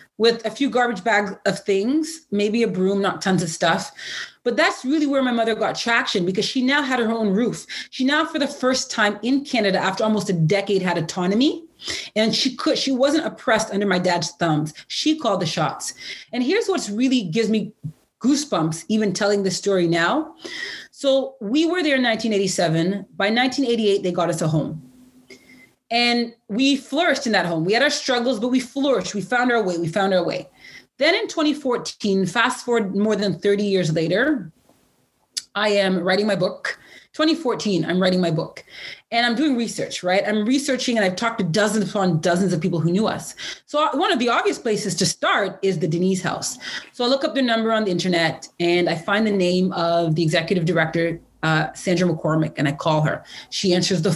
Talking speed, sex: 200 wpm, female